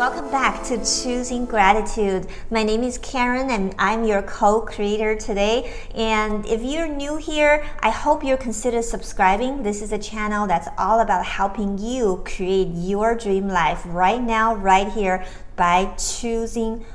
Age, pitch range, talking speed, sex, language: 50-69, 190-240 Hz, 150 wpm, female, English